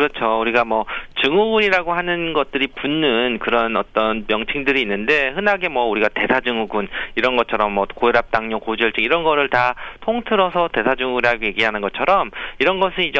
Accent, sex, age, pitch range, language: native, male, 40-59, 115-160 Hz, Korean